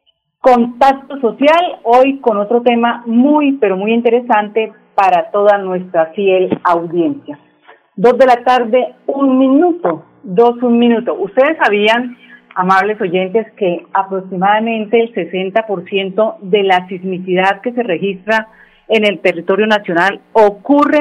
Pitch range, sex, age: 190-245 Hz, female, 40-59